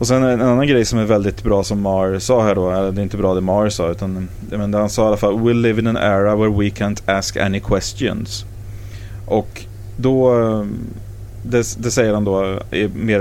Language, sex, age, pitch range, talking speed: English, male, 30-49, 95-115 Hz, 220 wpm